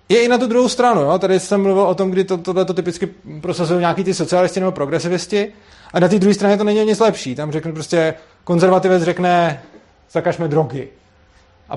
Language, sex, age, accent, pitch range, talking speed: Czech, male, 30-49, native, 135-195 Hz, 195 wpm